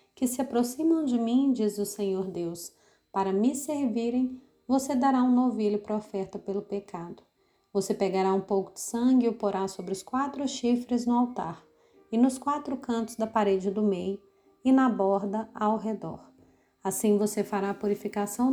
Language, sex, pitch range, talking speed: Portuguese, female, 205-255 Hz, 170 wpm